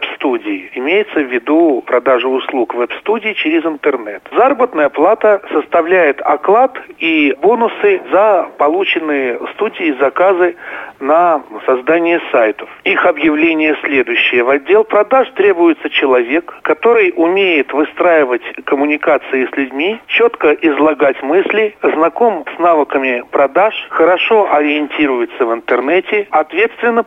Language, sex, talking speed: Russian, male, 105 wpm